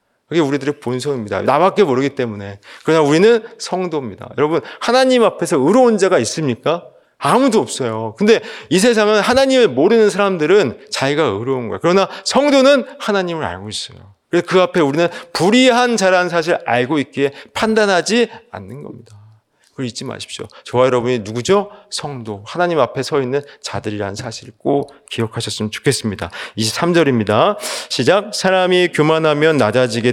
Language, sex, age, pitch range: Korean, male, 30-49, 120-190 Hz